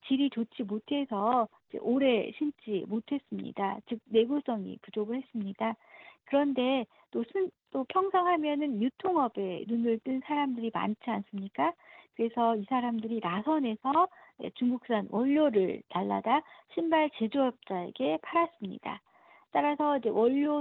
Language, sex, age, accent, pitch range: Korean, female, 60-79, native, 225-300 Hz